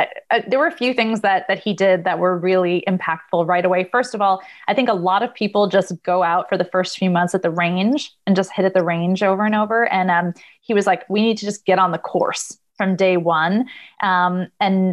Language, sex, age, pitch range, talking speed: English, female, 20-39, 180-220 Hz, 255 wpm